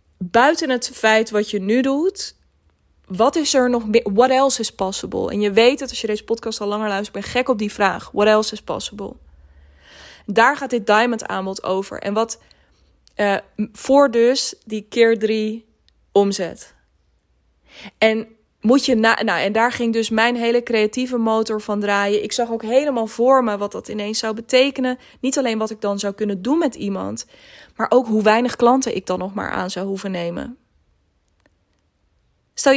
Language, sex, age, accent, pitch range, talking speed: Dutch, female, 20-39, Dutch, 205-250 Hz, 180 wpm